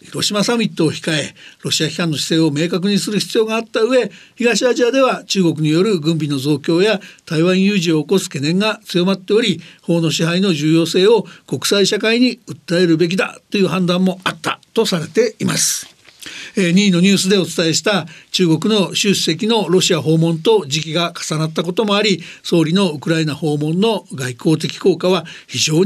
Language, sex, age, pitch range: Japanese, male, 60-79, 165-205 Hz